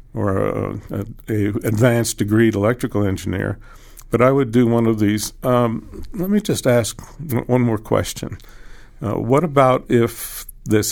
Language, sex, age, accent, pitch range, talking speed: English, male, 60-79, American, 105-125 Hz, 155 wpm